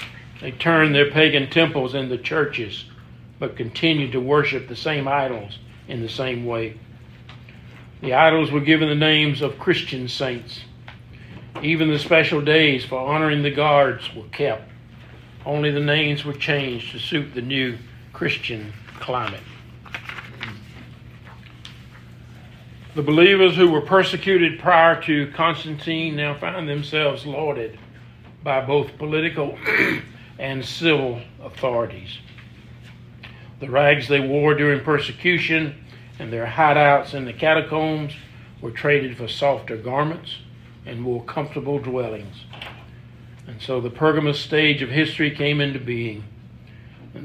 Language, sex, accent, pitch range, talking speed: English, male, American, 120-150 Hz, 125 wpm